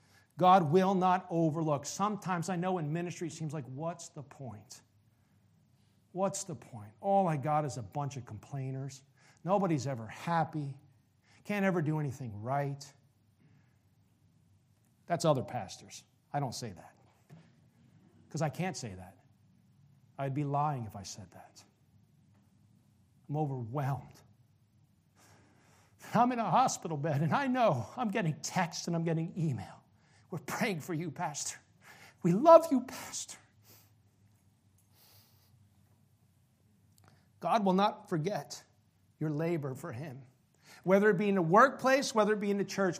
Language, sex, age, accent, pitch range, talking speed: English, male, 50-69, American, 110-175 Hz, 140 wpm